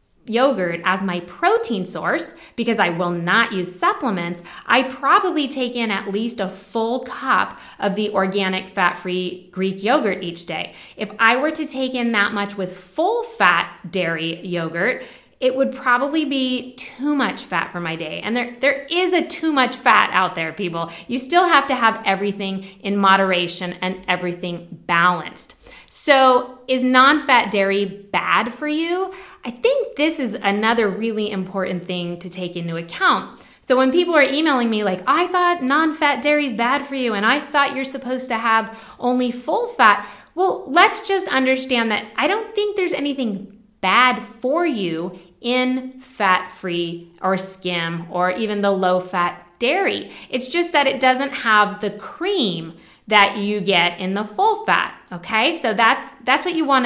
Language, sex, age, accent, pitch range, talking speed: English, female, 20-39, American, 185-270 Hz, 170 wpm